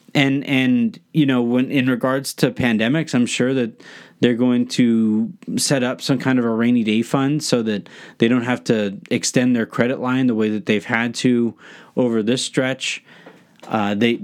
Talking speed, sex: 190 wpm, male